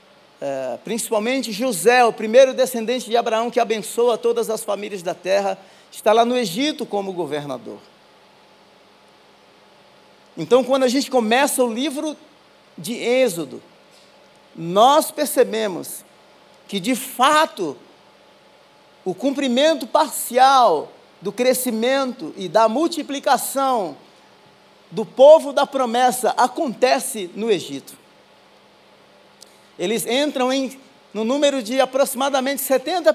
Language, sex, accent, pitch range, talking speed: Portuguese, male, Brazilian, 230-280 Hz, 105 wpm